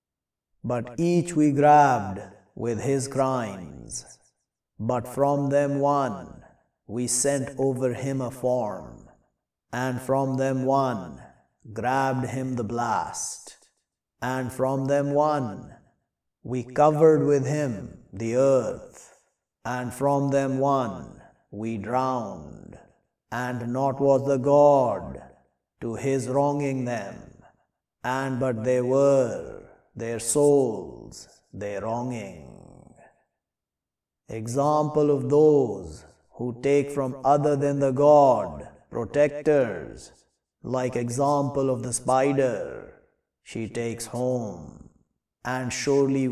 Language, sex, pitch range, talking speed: English, male, 120-140 Hz, 100 wpm